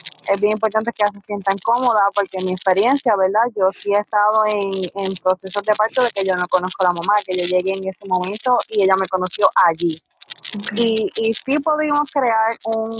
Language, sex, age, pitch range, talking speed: Spanish, female, 20-39, 195-235 Hz, 215 wpm